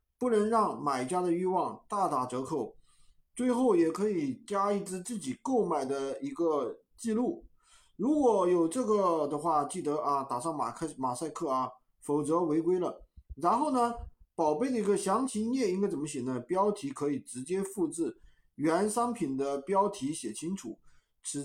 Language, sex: Chinese, male